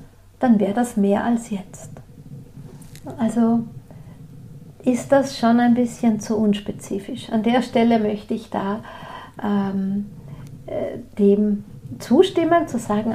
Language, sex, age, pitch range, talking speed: German, female, 50-69, 200-245 Hz, 115 wpm